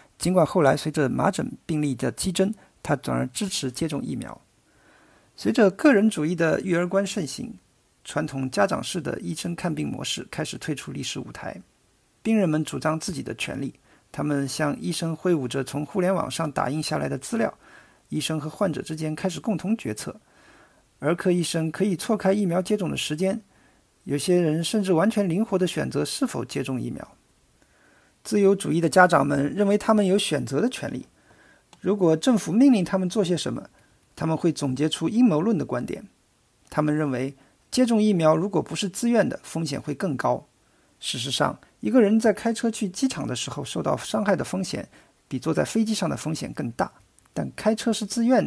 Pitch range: 150-205 Hz